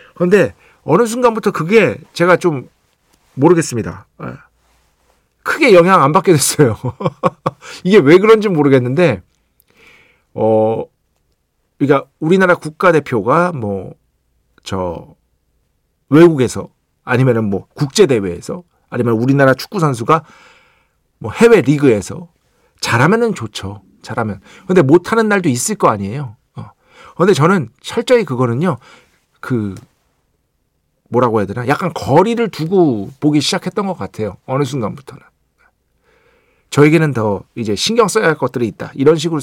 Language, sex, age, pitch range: Korean, male, 50-69, 115-175 Hz